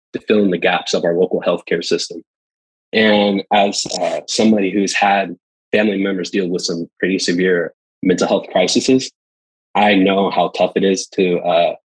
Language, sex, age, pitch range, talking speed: English, male, 20-39, 90-105 Hz, 170 wpm